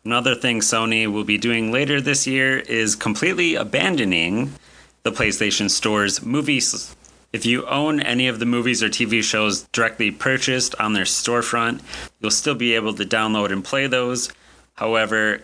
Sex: male